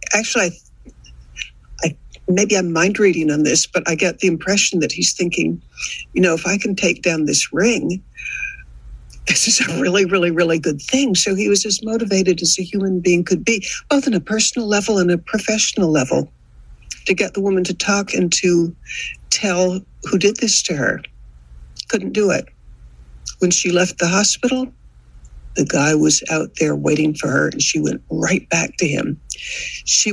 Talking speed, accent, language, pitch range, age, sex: 185 wpm, American, English, 160-200 Hz, 60-79, female